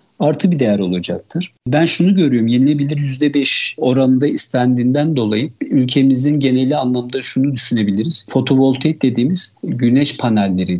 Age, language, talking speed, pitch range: 50-69, Turkish, 115 wpm, 120-145 Hz